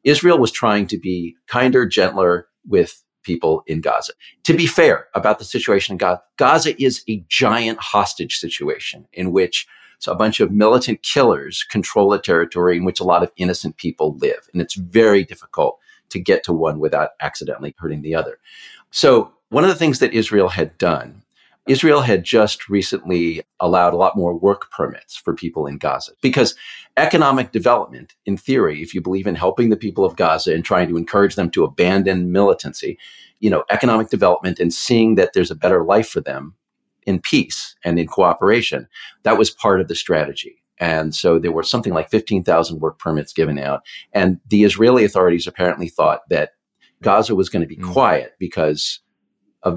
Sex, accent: male, American